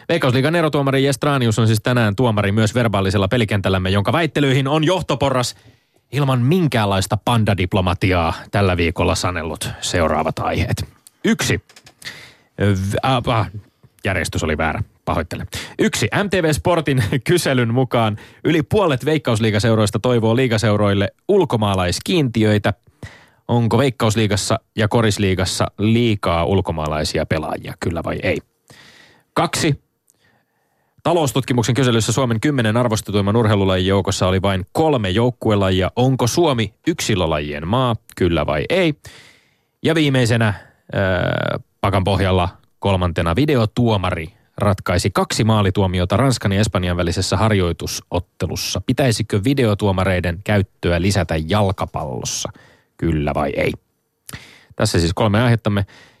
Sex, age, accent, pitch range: male, 30-49, native, 95-125 Hz